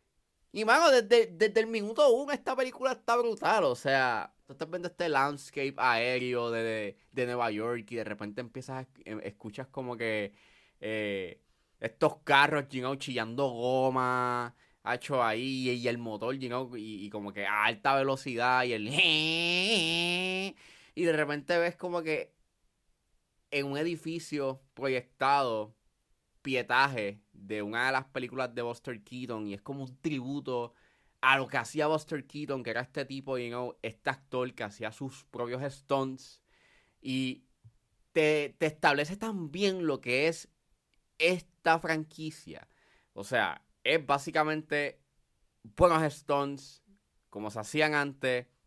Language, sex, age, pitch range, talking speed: Spanish, male, 20-39, 120-155 Hz, 140 wpm